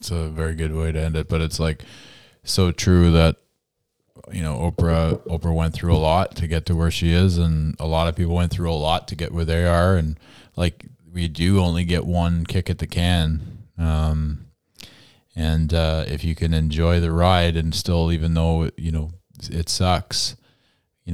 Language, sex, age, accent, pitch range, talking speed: English, male, 20-39, American, 80-95 Hz, 200 wpm